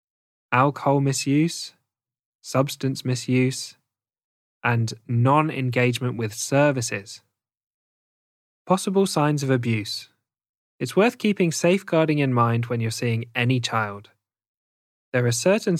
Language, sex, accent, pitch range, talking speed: English, male, British, 115-140 Hz, 100 wpm